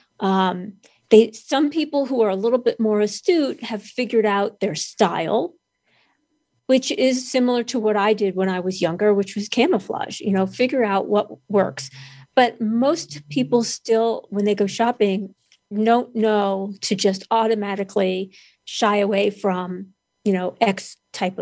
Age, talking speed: 50-69, 155 wpm